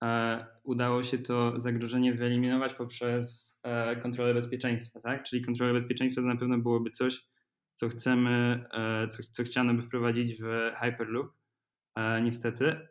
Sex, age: male, 20-39